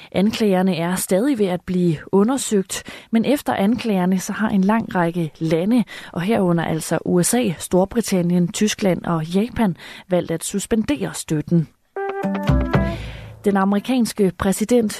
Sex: female